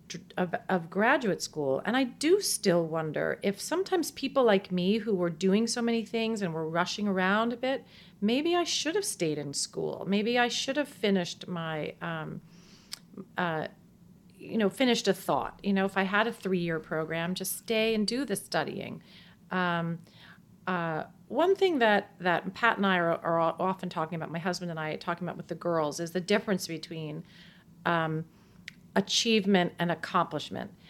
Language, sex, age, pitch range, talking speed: English, female, 40-59, 175-210 Hz, 175 wpm